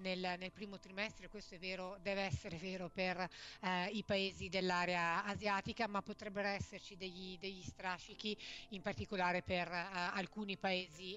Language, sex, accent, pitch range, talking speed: Italian, female, native, 180-210 Hz, 150 wpm